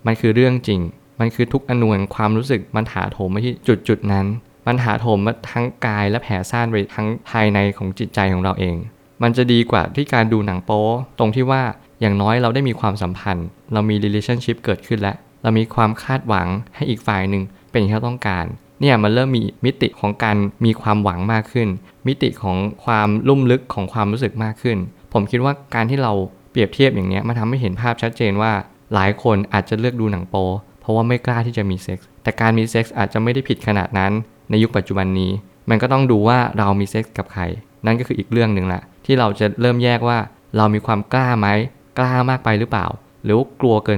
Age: 20-39